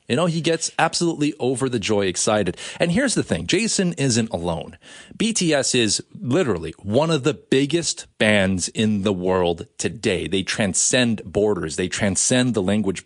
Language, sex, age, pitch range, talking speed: English, male, 30-49, 105-155 Hz, 160 wpm